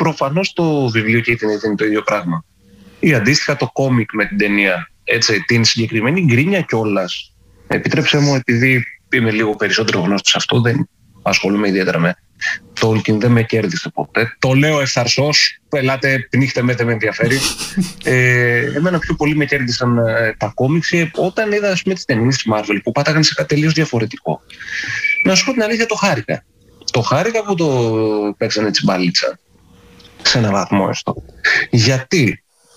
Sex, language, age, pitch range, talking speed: male, Greek, 30-49, 110-150 Hz, 160 wpm